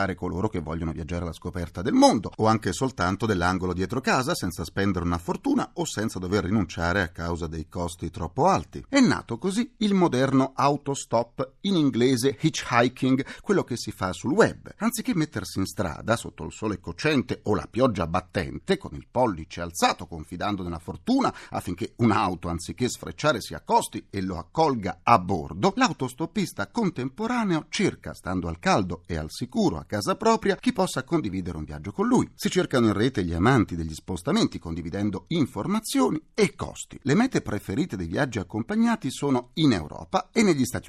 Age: 40-59